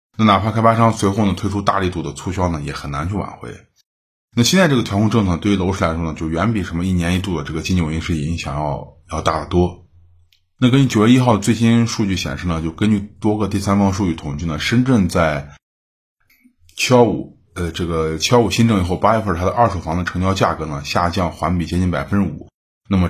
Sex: male